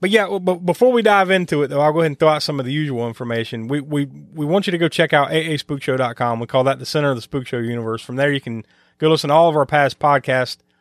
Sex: male